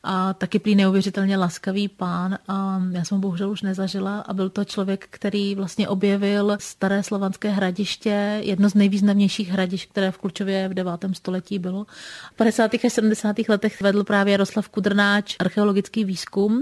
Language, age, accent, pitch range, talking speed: Czech, 30-49, native, 190-210 Hz, 165 wpm